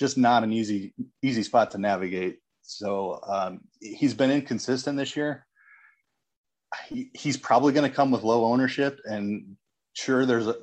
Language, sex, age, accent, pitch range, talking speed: English, male, 30-49, American, 100-130 Hz, 150 wpm